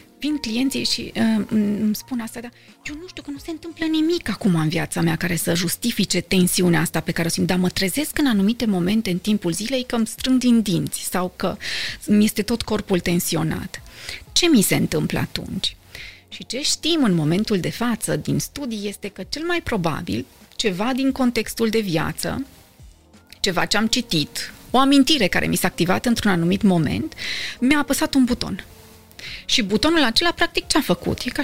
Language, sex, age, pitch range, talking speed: Romanian, female, 30-49, 175-250 Hz, 185 wpm